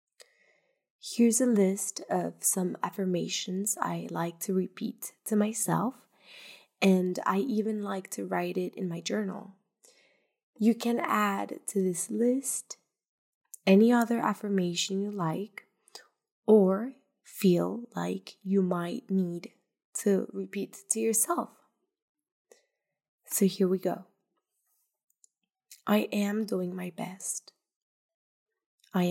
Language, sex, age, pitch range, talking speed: English, female, 20-39, 185-230 Hz, 110 wpm